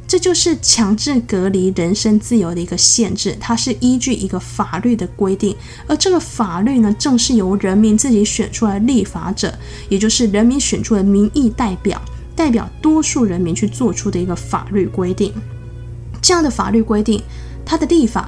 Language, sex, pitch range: Chinese, female, 185-240 Hz